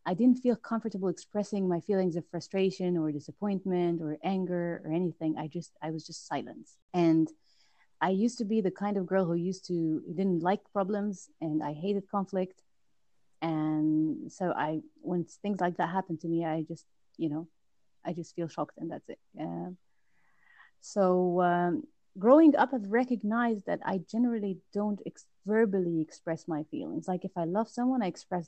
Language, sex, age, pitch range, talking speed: English, female, 30-49, 165-200 Hz, 175 wpm